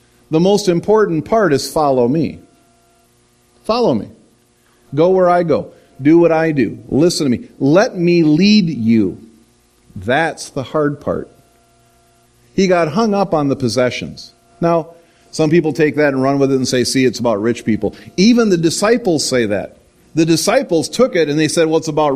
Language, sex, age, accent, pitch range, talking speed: English, male, 50-69, American, 120-180 Hz, 180 wpm